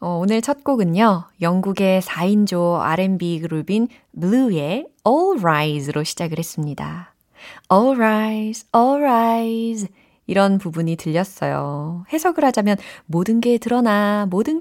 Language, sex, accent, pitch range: Korean, female, native, 165-235 Hz